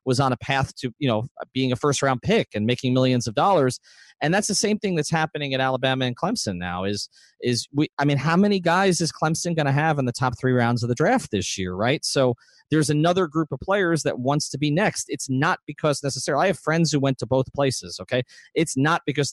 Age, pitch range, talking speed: 30-49, 115-155 Hz, 250 wpm